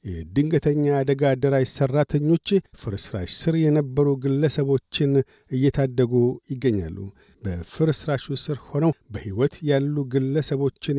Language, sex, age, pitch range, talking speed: Amharic, male, 50-69, 130-150 Hz, 80 wpm